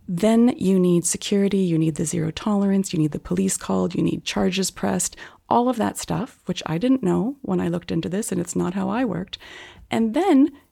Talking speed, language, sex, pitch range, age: 220 wpm, English, female, 165-210 Hz, 30-49